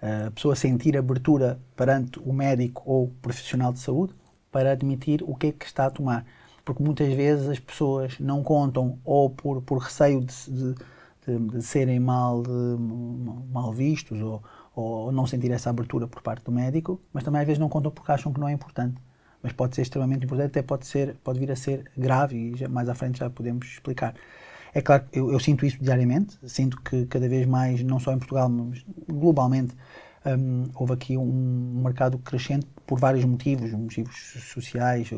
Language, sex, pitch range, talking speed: Portuguese, male, 125-135 Hz, 190 wpm